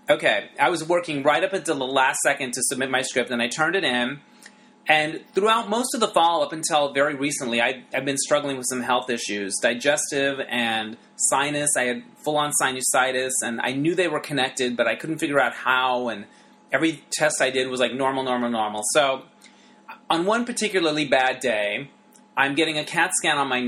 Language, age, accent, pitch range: English, 30-49, American, 130-160 Hz